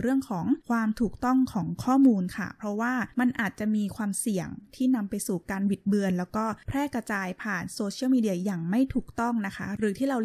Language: Thai